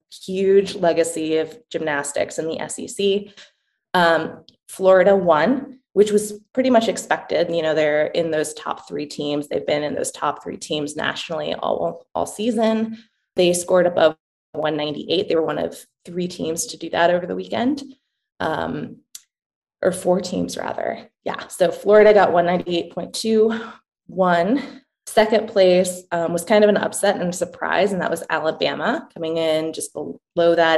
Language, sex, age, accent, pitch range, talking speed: English, female, 20-39, American, 160-205 Hz, 175 wpm